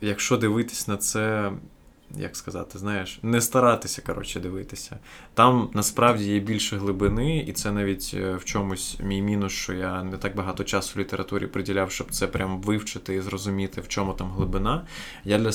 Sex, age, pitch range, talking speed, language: male, 20-39, 95-105 Hz, 170 wpm, Ukrainian